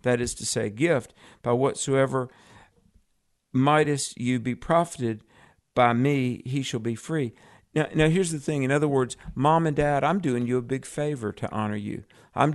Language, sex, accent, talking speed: English, male, American, 180 wpm